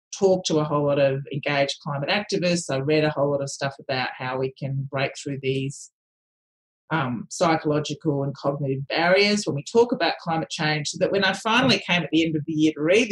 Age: 30-49